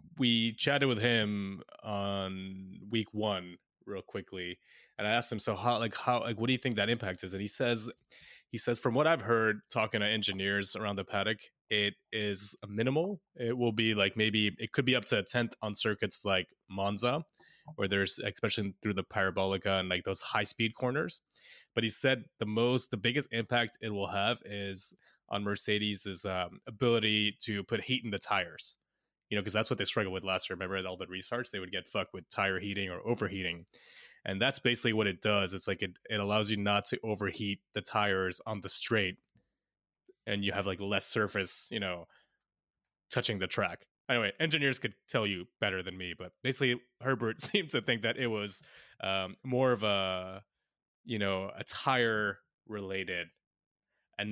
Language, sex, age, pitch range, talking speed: English, male, 20-39, 100-120 Hz, 195 wpm